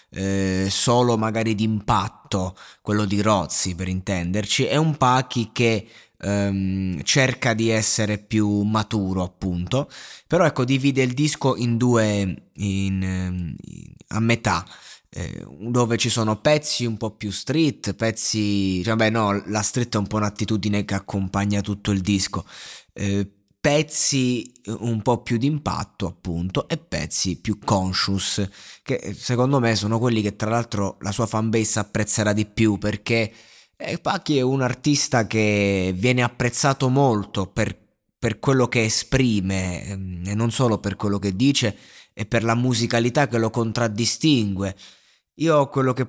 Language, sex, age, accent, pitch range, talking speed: Italian, male, 20-39, native, 100-125 Hz, 145 wpm